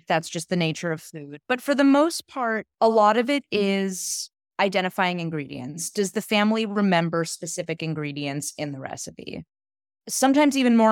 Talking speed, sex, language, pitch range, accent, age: 165 wpm, female, English, 170-225 Hz, American, 20-39